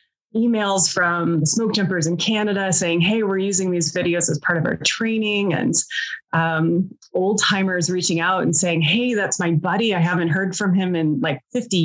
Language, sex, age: English, female, 20-39